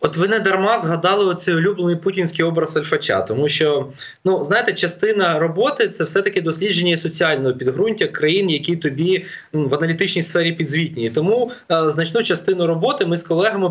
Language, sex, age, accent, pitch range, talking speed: Ukrainian, male, 20-39, native, 155-200 Hz, 165 wpm